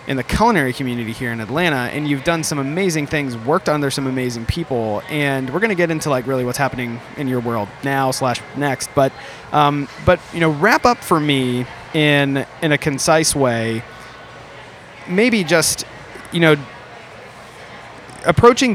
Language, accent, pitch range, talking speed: English, American, 125-155 Hz, 170 wpm